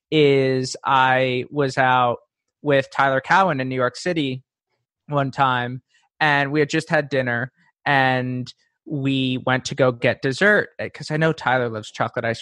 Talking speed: 160 wpm